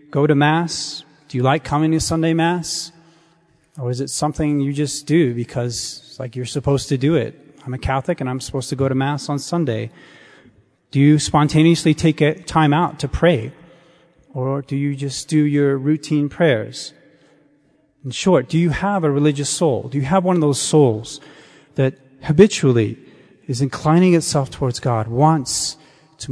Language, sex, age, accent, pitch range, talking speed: English, male, 30-49, American, 130-160 Hz, 175 wpm